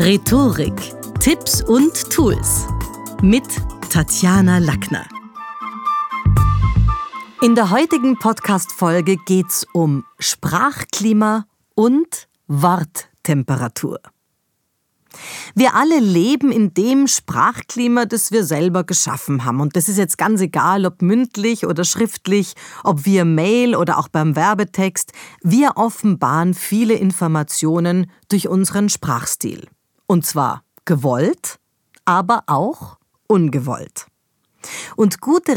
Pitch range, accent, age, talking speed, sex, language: 160-215 Hz, German, 40-59, 100 wpm, female, German